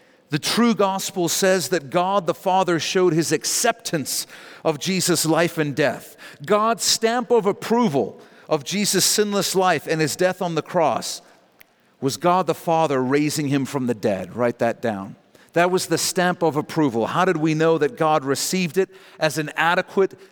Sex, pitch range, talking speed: male, 135-175 Hz, 175 wpm